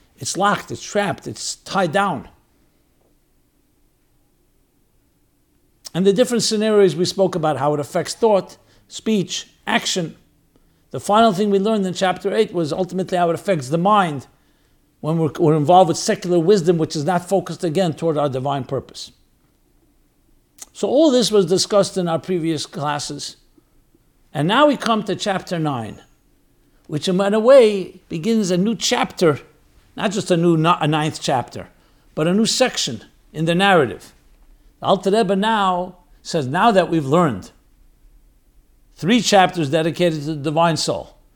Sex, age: male, 60-79